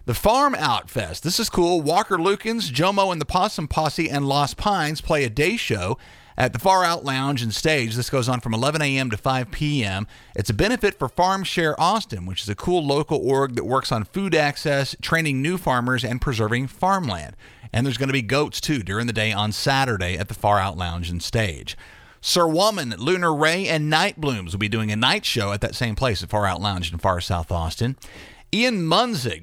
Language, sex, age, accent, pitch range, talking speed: English, male, 40-59, American, 110-160 Hz, 220 wpm